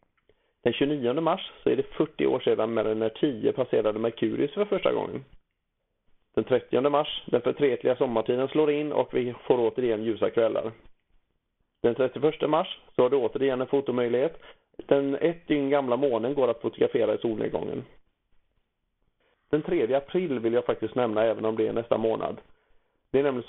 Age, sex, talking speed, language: 40-59, male, 170 wpm, Swedish